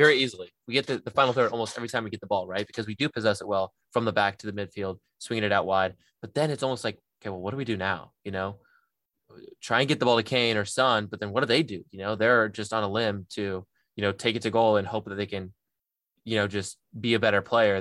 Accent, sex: American, male